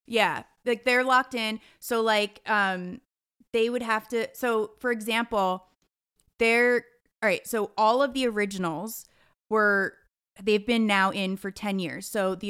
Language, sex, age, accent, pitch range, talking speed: English, female, 20-39, American, 190-230 Hz, 160 wpm